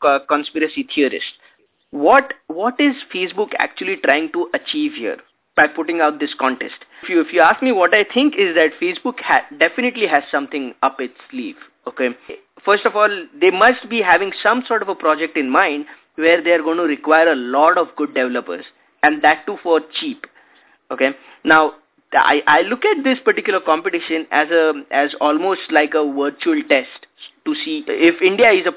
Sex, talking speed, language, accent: male, 185 wpm, English, Indian